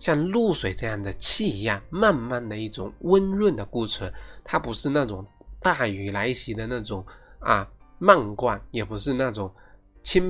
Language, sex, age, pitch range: Chinese, male, 20-39, 100-135 Hz